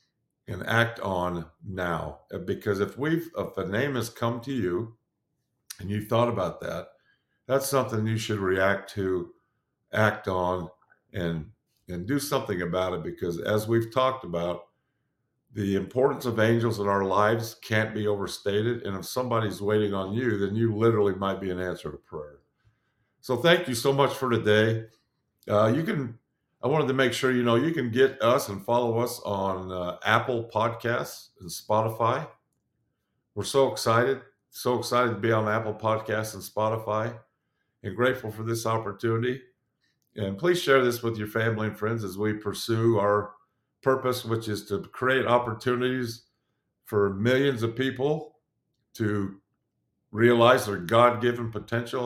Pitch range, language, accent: 100-125 Hz, English, American